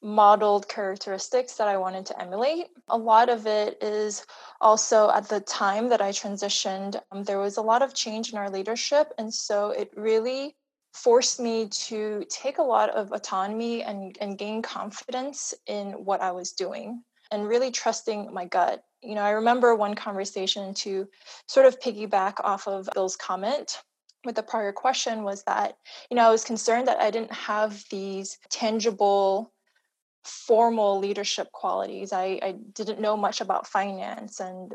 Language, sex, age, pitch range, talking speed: English, female, 20-39, 195-230 Hz, 170 wpm